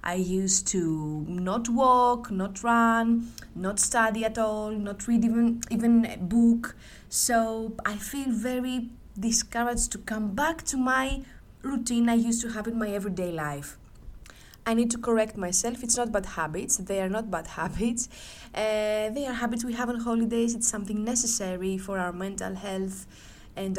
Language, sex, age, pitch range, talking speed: Greek, female, 20-39, 190-235 Hz, 165 wpm